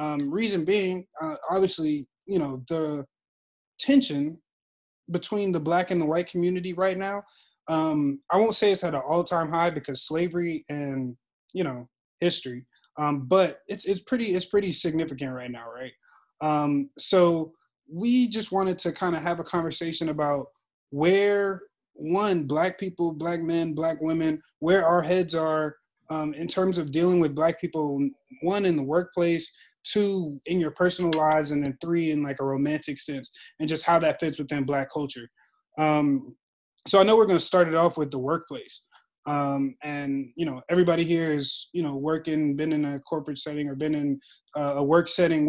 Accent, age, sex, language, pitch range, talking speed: American, 20-39, male, English, 145-175 Hz, 180 wpm